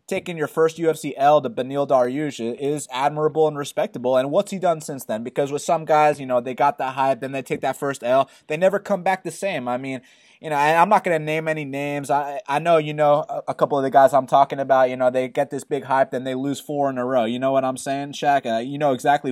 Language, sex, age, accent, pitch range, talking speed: English, male, 20-39, American, 130-165 Hz, 280 wpm